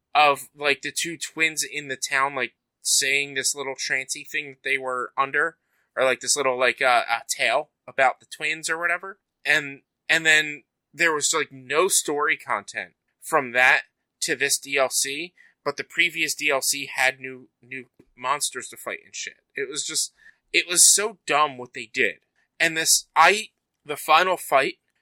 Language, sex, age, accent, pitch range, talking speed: English, male, 20-39, American, 130-160 Hz, 175 wpm